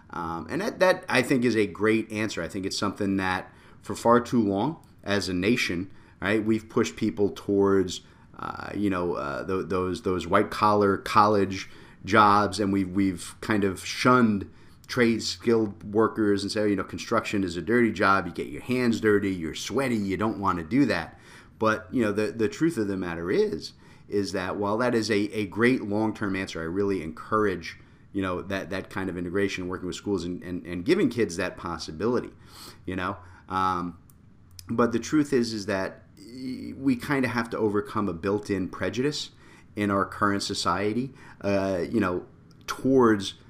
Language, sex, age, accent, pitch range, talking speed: English, male, 30-49, American, 95-110 Hz, 185 wpm